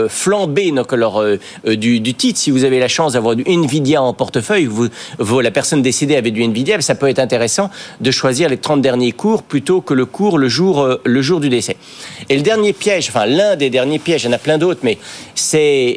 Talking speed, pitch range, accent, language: 235 wpm, 120-155 Hz, French, French